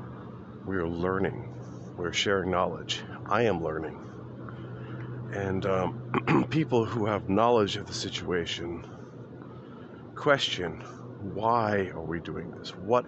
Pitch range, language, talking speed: 80-110 Hz, English, 120 wpm